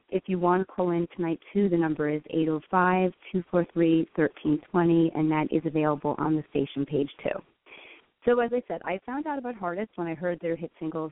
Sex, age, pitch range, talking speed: female, 30-49, 155-180 Hz, 195 wpm